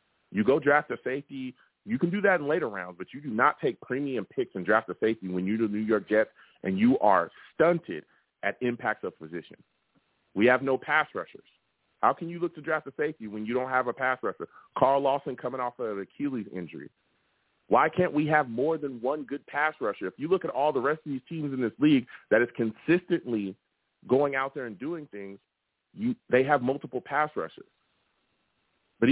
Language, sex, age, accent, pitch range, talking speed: English, male, 30-49, American, 120-155 Hz, 215 wpm